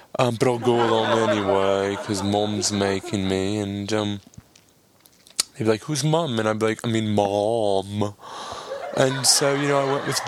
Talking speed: 195 wpm